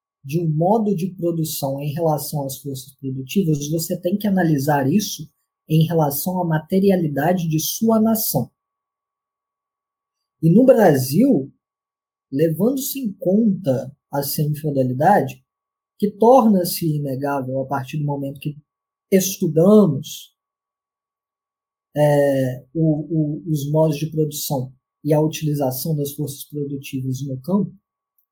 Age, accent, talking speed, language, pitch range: 20-39, Brazilian, 115 wpm, Portuguese, 130-200 Hz